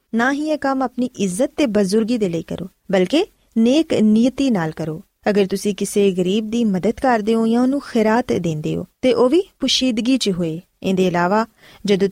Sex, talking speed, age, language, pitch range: female, 190 wpm, 20-39, Punjabi, 190-255 Hz